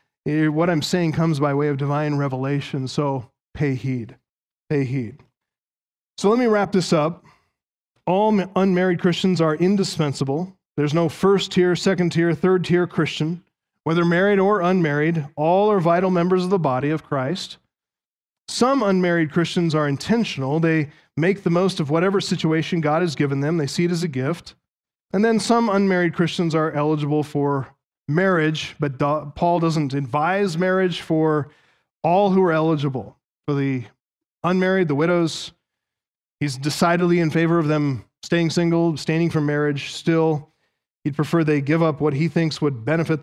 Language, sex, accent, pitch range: English, male, American, 145-175 Hz